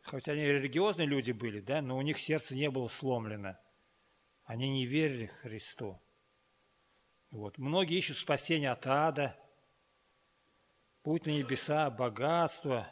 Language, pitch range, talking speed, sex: Russian, 125-150 Hz, 125 wpm, male